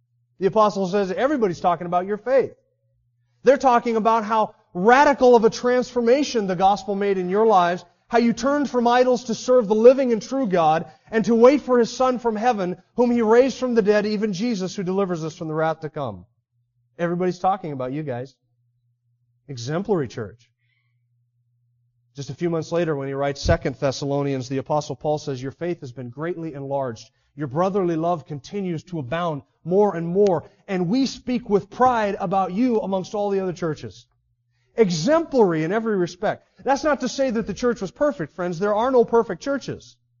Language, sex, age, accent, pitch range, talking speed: English, male, 30-49, American, 150-230 Hz, 185 wpm